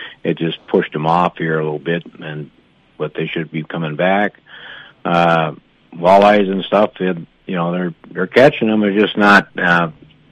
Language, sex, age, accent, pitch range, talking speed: English, male, 60-79, American, 85-95 Hz, 180 wpm